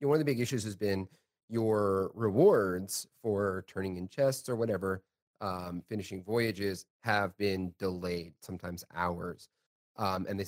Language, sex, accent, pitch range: English, male, American, 95-120 Hz